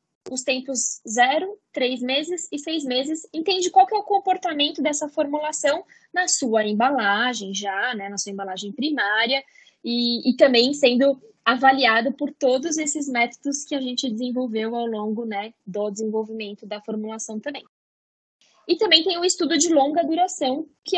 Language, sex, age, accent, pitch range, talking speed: Portuguese, female, 10-29, Brazilian, 220-310 Hz, 155 wpm